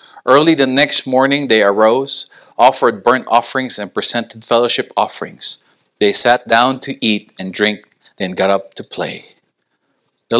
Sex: male